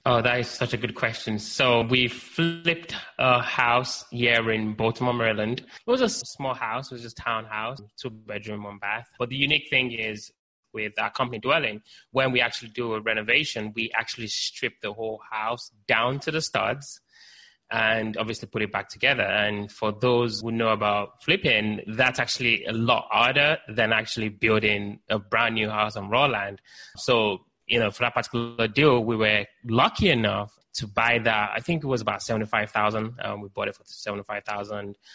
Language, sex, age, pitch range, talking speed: English, male, 20-39, 105-125 Hz, 190 wpm